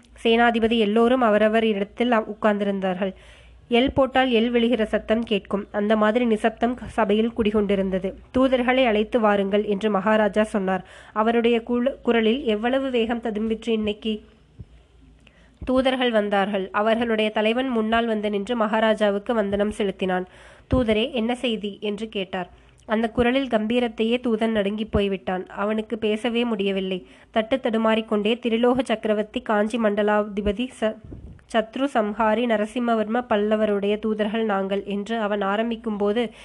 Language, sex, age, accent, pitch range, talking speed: Tamil, female, 20-39, native, 210-235 Hz, 115 wpm